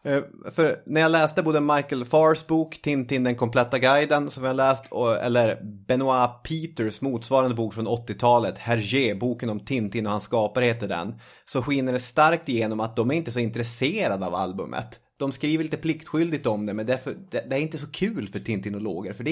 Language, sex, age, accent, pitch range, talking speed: Swedish, male, 30-49, native, 105-135 Hz, 200 wpm